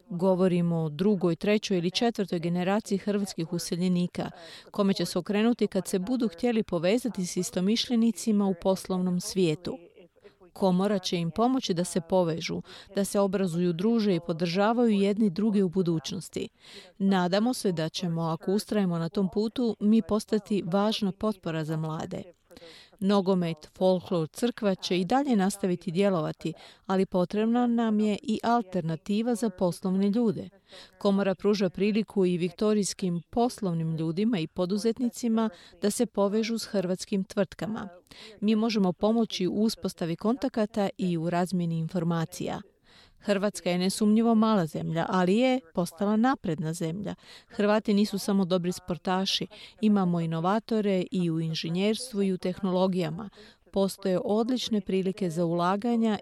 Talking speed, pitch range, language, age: 135 wpm, 180-215 Hz, Croatian, 40-59